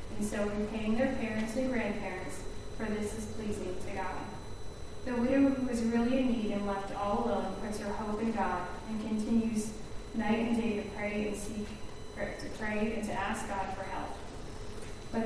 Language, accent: English, American